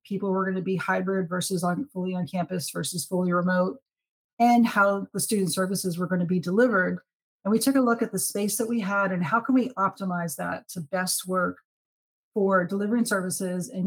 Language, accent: English, American